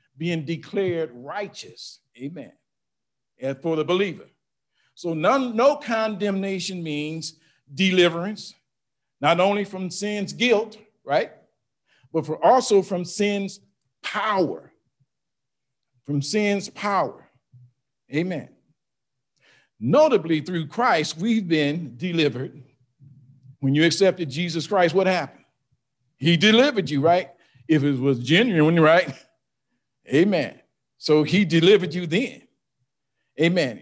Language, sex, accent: English, male, American